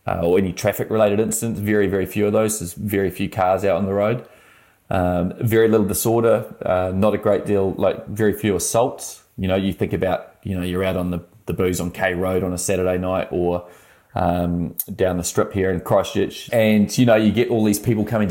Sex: male